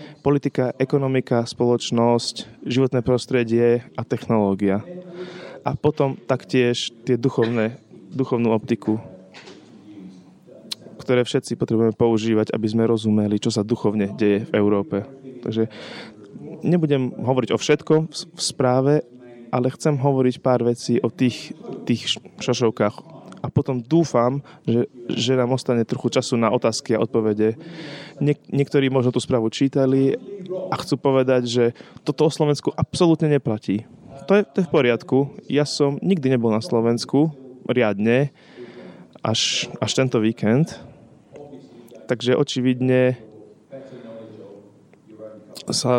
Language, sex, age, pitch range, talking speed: Slovak, male, 20-39, 115-140 Hz, 115 wpm